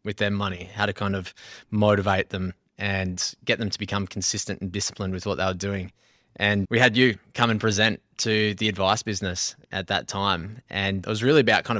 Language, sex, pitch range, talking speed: English, male, 95-110 Hz, 215 wpm